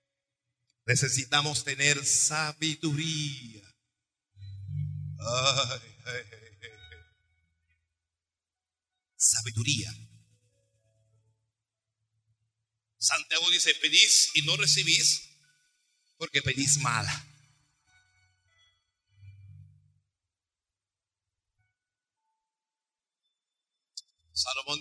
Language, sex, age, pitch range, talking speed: Spanish, male, 50-69, 110-155 Hz, 45 wpm